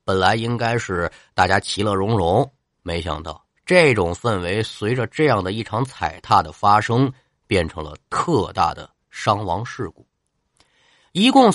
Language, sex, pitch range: Chinese, male, 90-130 Hz